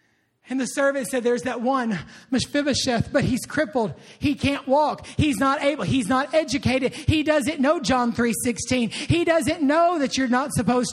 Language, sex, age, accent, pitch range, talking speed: English, male, 40-59, American, 230-305 Hz, 180 wpm